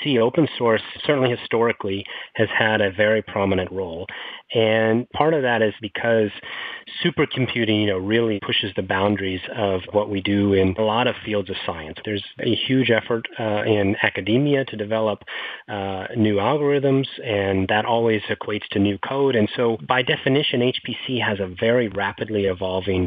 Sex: male